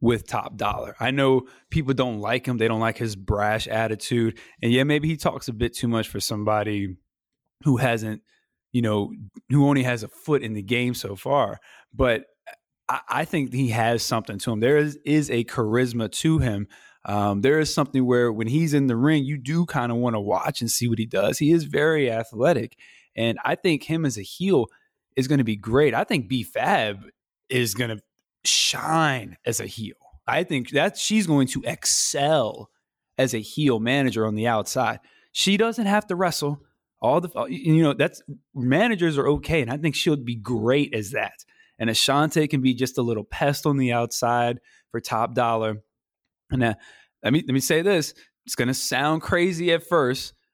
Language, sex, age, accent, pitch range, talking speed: English, male, 20-39, American, 115-150 Hz, 200 wpm